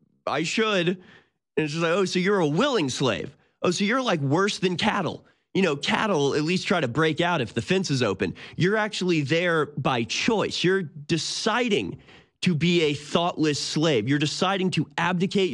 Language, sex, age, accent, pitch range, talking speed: English, male, 30-49, American, 135-180 Hz, 190 wpm